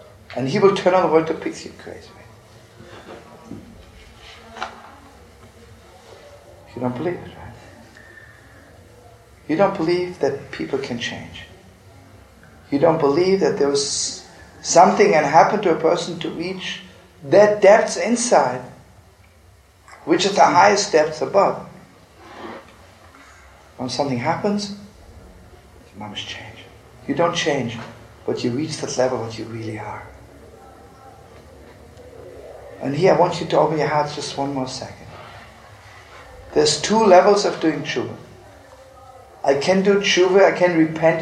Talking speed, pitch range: 130 wpm, 110-165 Hz